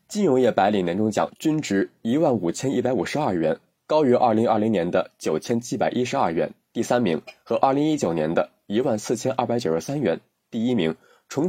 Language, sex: Chinese, male